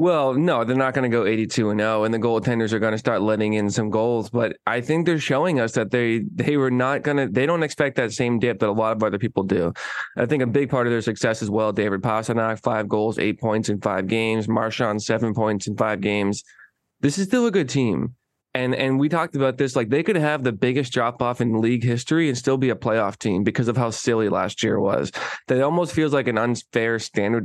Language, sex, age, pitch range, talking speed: English, male, 20-39, 110-130 Hz, 250 wpm